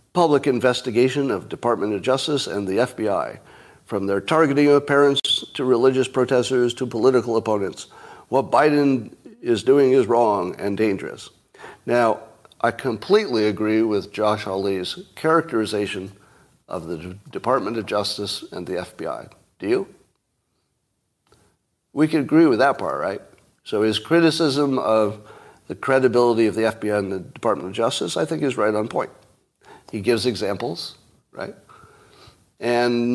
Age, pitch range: 50-69, 110-145 Hz